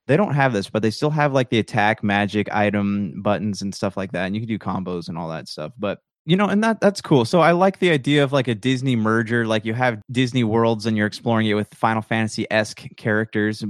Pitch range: 110-140 Hz